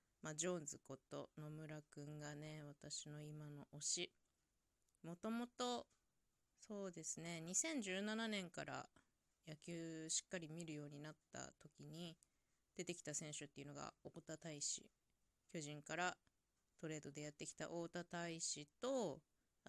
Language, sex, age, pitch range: Japanese, female, 20-39, 150-190 Hz